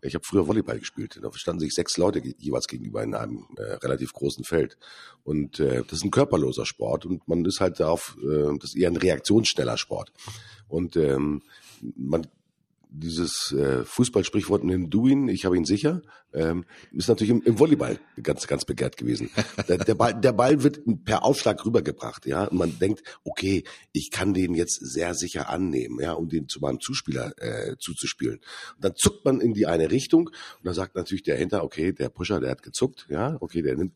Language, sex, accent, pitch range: German, male, German, 85-115 Hz